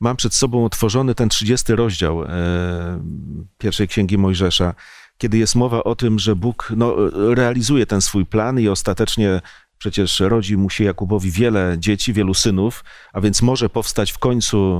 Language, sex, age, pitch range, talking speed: Polish, male, 40-59, 95-120 Hz, 160 wpm